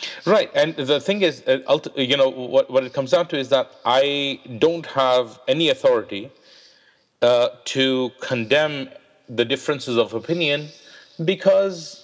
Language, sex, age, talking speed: English, male, 40-59, 135 wpm